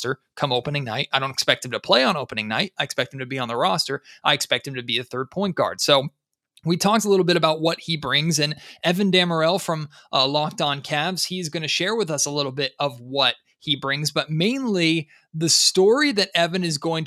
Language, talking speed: English, 240 wpm